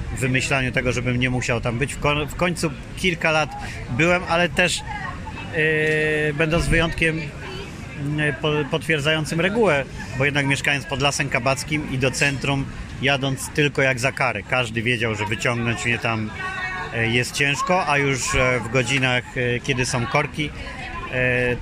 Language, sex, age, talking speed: Polish, male, 40-59, 140 wpm